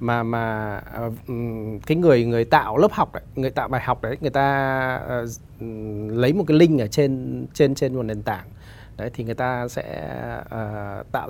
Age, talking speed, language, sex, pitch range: 20-39, 190 wpm, Vietnamese, male, 110-140 Hz